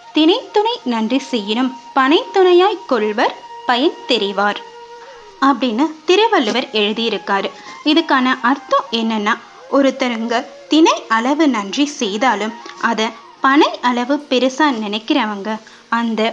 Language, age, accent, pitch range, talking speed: Tamil, 20-39, native, 225-320 Hz, 90 wpm